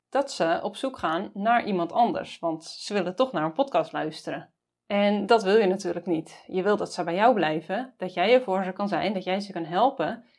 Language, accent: Dutch, Dutch